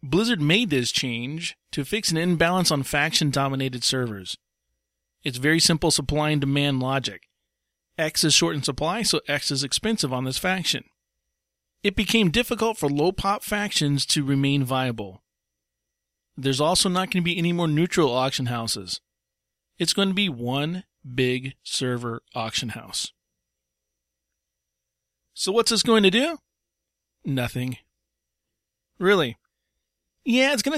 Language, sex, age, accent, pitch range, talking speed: English, male, 40-59, American, 130-185 Hz, 135 wpm